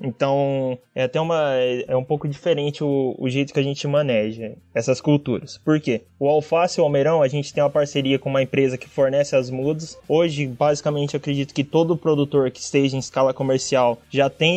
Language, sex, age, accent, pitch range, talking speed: Portuguese, male, 20-39, Brazilian, 140-165 Hz, 205 wpm